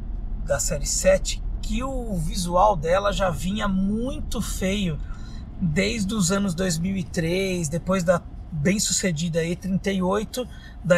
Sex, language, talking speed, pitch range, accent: male, Portuguese, 110 wpm, 170-205 Hz, Brazilian